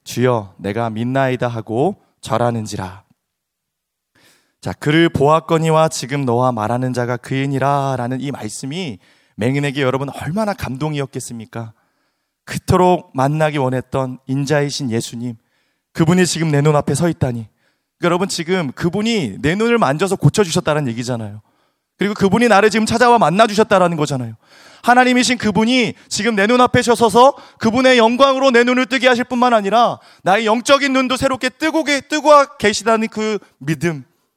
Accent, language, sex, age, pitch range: native, Korean, male, 30-49, 130-215 Hz